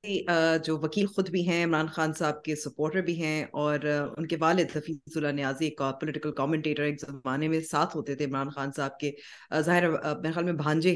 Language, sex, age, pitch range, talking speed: Urdu, female, 30-49, 145-175 Hz, 195 wpm